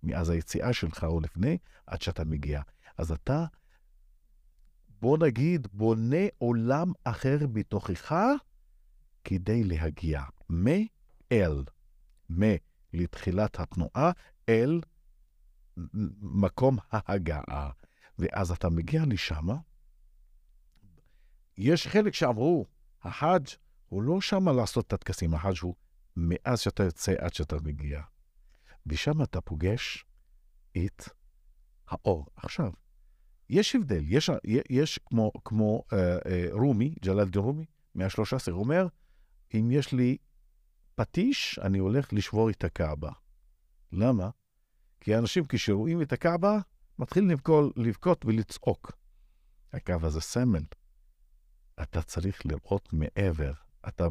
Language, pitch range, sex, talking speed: Hebrew, 80-125 Hz, male, 100 wpm